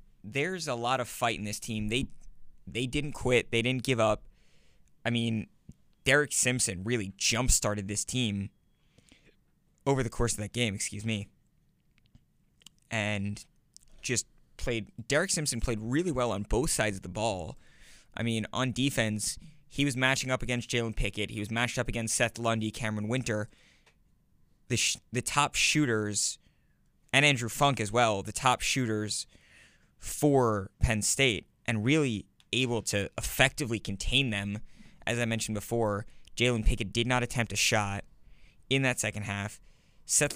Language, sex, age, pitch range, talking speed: English, male, 20-39, 105-130 Hz, 160 wpm